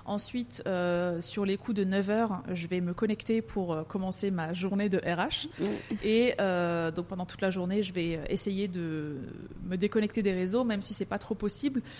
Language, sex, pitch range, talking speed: French, female, 185-220 Hz, 195 wpm